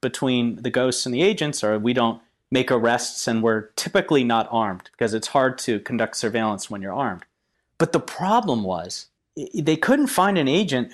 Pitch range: 115-150 Hz